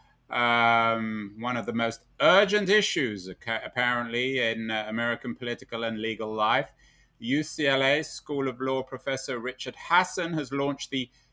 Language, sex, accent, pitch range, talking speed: English, male, British, 110-135 Hz, 130 wpm